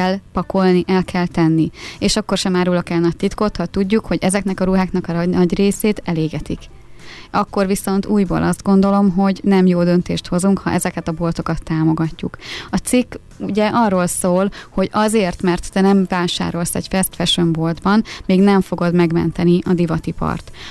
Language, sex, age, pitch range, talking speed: Hungarian, female, 20-39, 170-195 Hz, 175 wpm